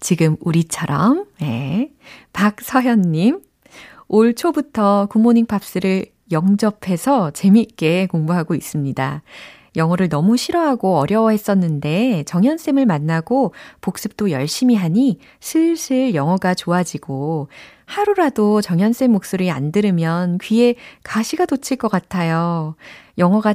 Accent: native